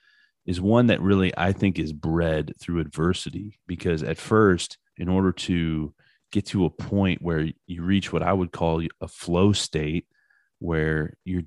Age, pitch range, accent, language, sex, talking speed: 30-49, 85-105 Hz, American, English, male, 165 wpm